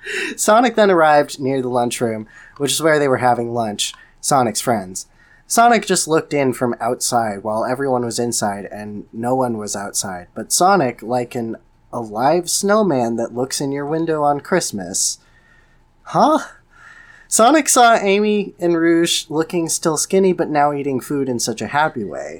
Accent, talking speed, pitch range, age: American, 165 wpm, 115-165 Hz, 20-39